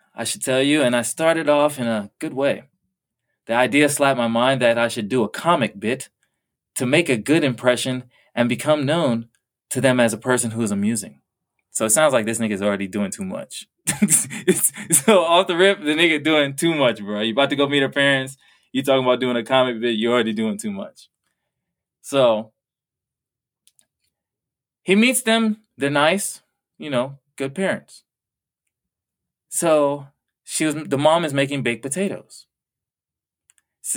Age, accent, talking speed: 20-39, American, 175 wpm